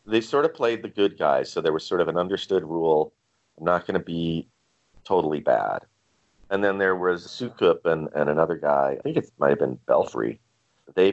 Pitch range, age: 75-110 Hz, 40-59